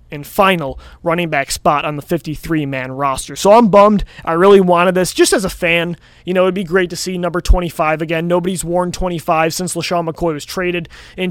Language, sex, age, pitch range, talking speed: English, male, 20-39, 170-195 Hz, 205 wpm